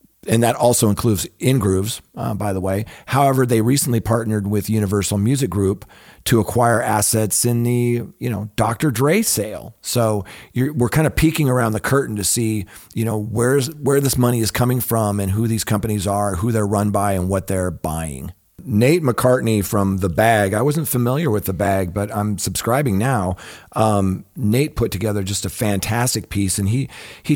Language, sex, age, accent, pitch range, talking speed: English, male, 40-59, American, 100-120 Hz, 190 wpm